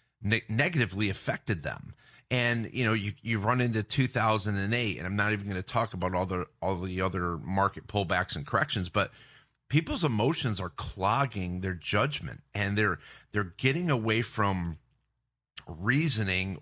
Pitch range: 95-125 Hz